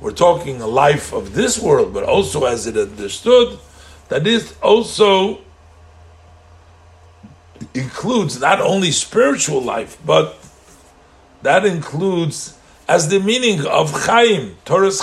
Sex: male